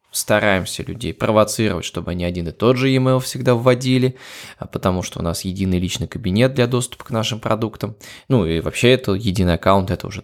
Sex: male